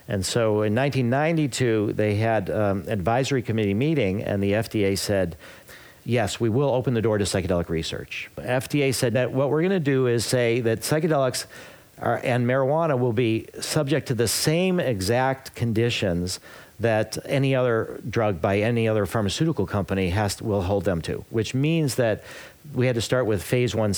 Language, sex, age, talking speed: English, male, 50-69, 185 wpm